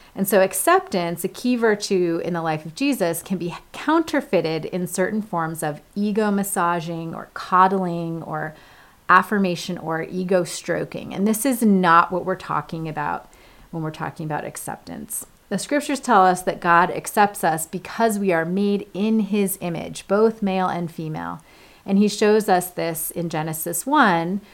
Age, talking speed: 30-49, 165 wpm